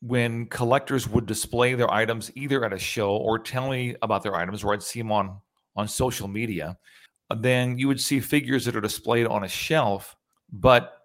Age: 40-59